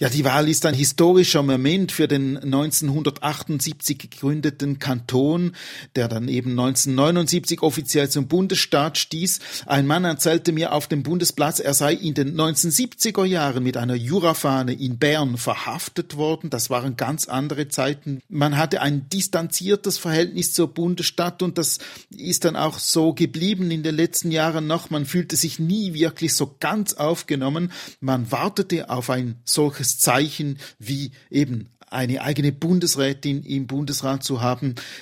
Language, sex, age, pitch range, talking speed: German, male, 40-59, 140-170 Hz, 150 wpm